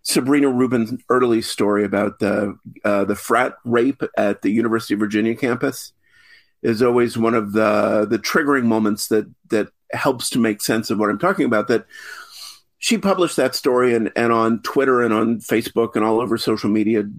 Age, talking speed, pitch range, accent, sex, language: 50-69, 180 wpm, 110-155 Hz, American, male, English